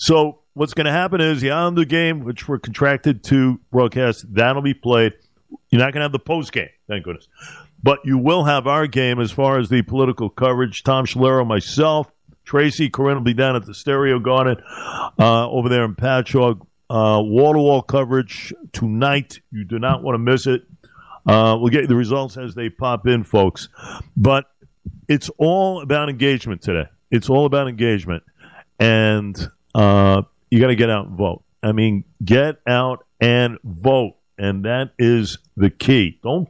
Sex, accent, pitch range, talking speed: male, American, 110-140 Hz, 180 wpm